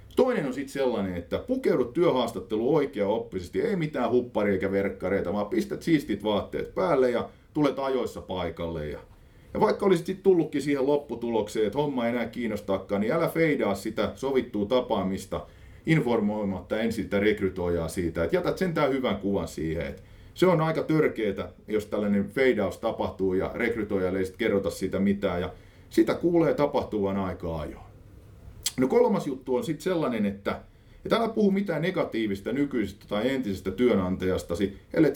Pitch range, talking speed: 95-140 Hz, 155 wpm